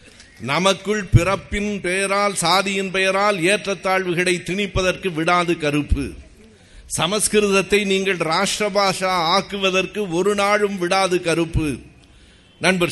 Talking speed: 90 wpm